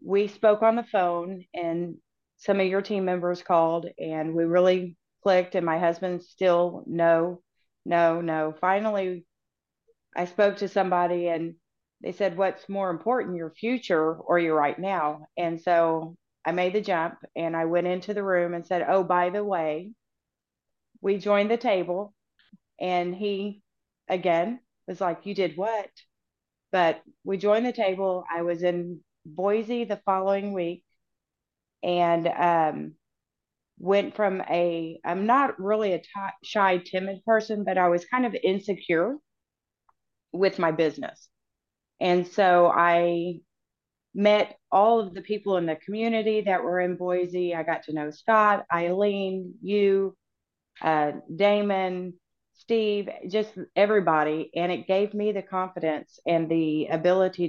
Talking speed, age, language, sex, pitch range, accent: 145 wpm, 30-49, English, female, 170-200 Hz, American